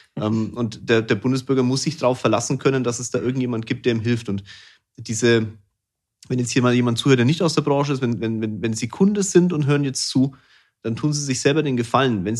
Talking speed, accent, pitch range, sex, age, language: 235 wpm, German, 110-135 Hz, male, 30-49, German